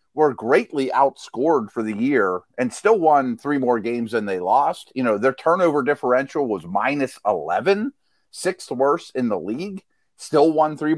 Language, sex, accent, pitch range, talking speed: English, male, American, 125-165 Hz, 170 wpm